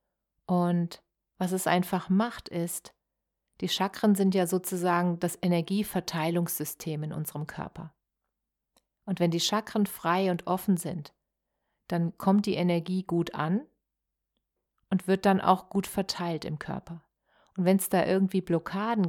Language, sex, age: German, female, 40-59